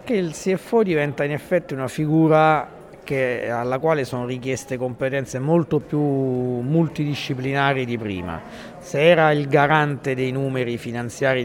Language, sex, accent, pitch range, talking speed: Italian, male, native, 120-150 Hz, 125 wpm